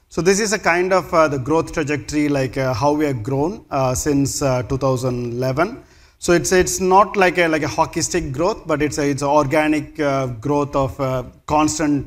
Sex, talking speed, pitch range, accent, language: male, 210 wpm, 135-155 Hz, Indian, English